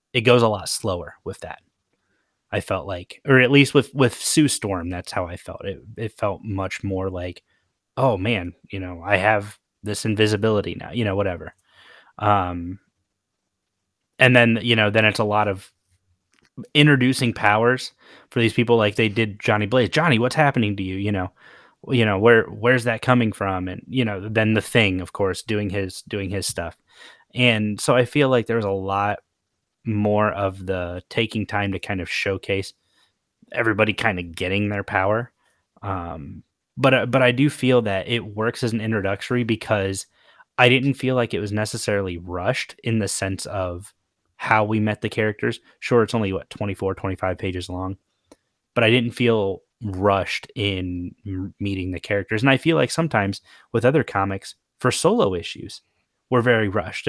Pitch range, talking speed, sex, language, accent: 95-120 Hz, 180 wpm, male, English, American